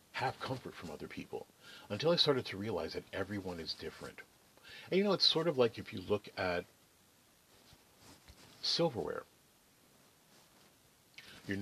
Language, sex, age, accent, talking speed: English, male, 40-59, American, 140 wpm